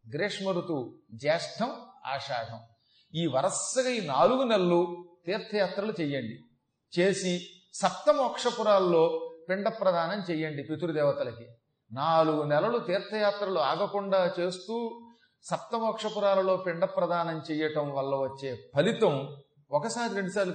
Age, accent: 40-59, native